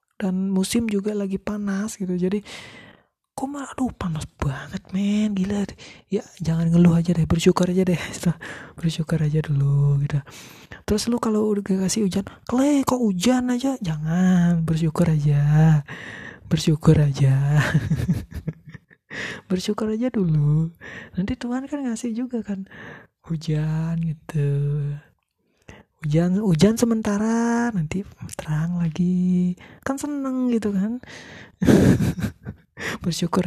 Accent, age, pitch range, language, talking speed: native, 20-39, 165-225 Hz, Indonesian, 115 wpm